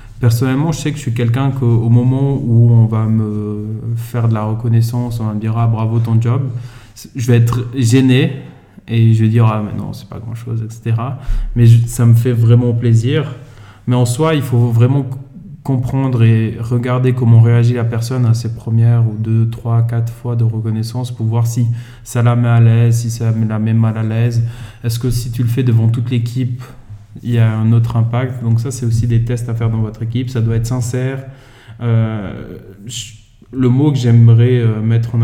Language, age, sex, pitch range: French, 20-39, male, 115-125 Hz